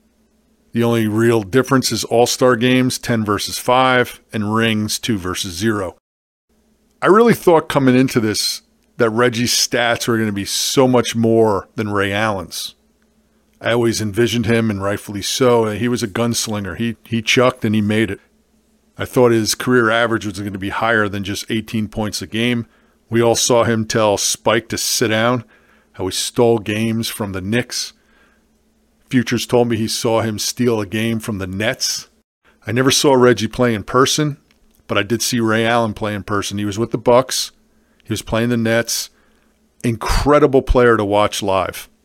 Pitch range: 110-130 Hz